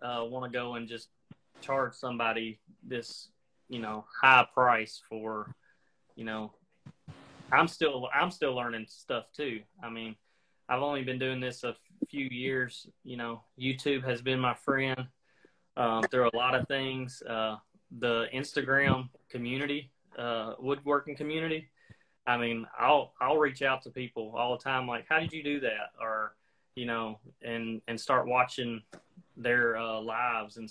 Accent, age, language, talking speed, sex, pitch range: American, 30-49, English, 160 wpm, male, 115-135 Hz